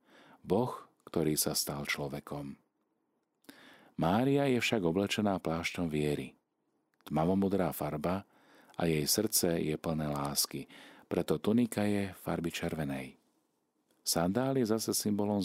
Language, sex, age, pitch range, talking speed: Slovak, male, 40-59, 75-90 Hz, 110 wpm